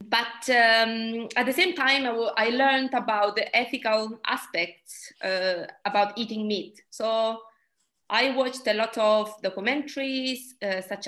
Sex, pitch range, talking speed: female, 205-235 Hz, 140 wpm